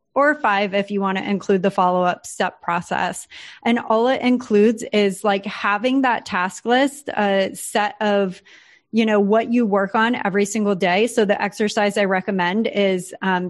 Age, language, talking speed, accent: 30-49, English, 180 wpm, American